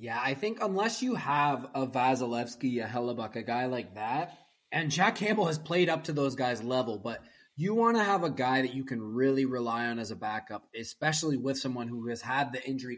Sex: male